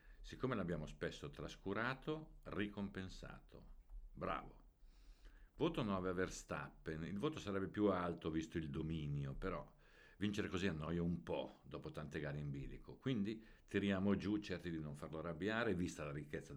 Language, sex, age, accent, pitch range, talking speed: Italian, male, 60-79, native, 75-95 Hz, 145 wpm